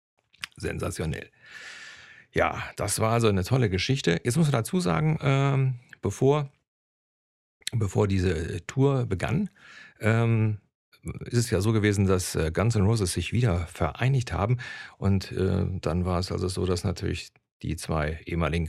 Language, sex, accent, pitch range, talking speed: German, male, German, 90-110 Hz, 145 wpm